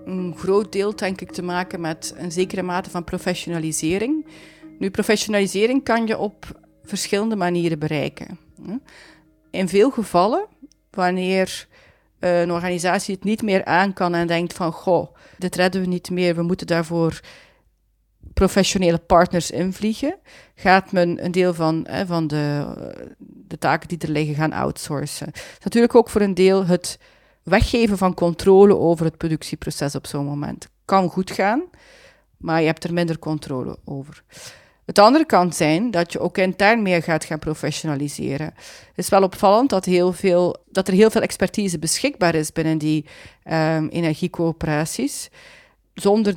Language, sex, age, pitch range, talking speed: Dutch, female, 40-59, 165-195 Hz, 150 wpm